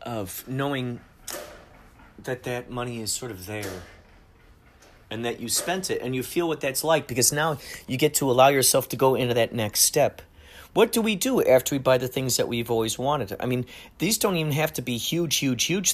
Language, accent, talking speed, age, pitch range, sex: English, American, 215 wpm, 40-59, 105-135 Hz, male